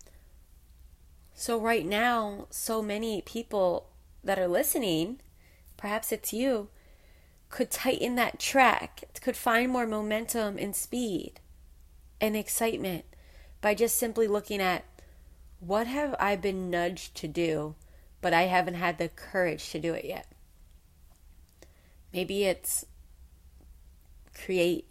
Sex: female